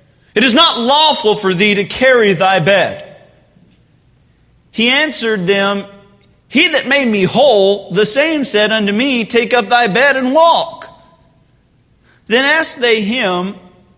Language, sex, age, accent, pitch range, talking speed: English, male, 40-59, American, 190-250 Hz, 140 wpm